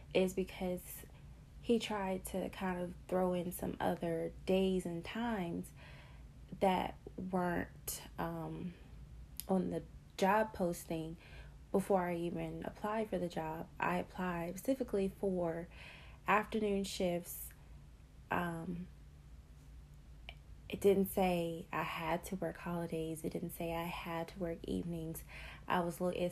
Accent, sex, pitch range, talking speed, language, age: American, female, 160-190 Hz, 125 wpm, English, 20-39